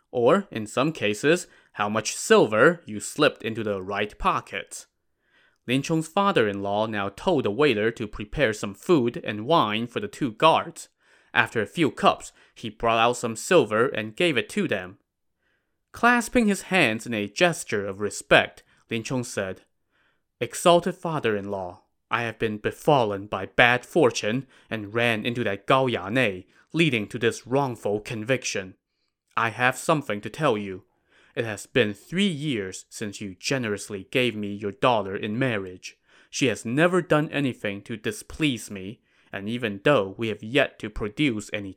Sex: male